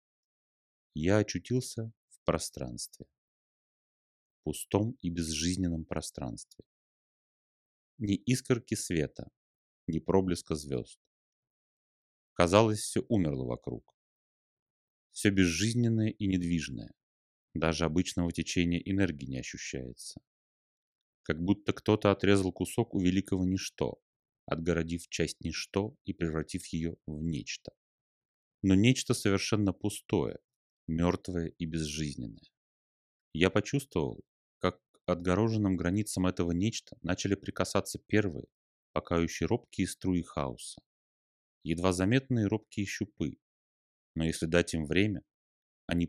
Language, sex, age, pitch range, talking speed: Russian, male, 30-49, 80-100 Hz, 100 wpm